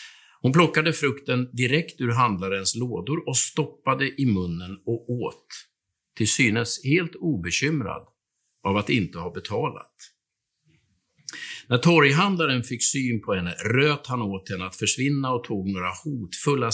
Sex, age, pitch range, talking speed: male, 50-69, 100-140 Hz, 135 wpm